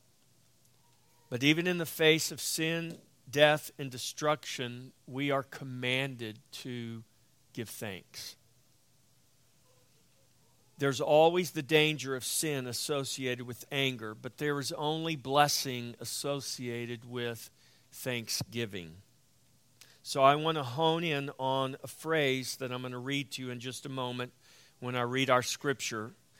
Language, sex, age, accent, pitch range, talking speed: English, male, 50-69, American, 125-150 Hz, 130 wpm